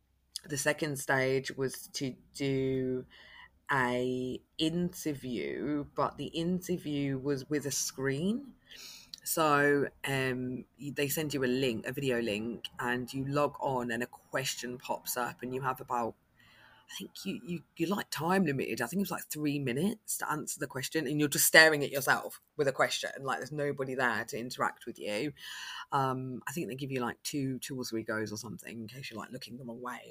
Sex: female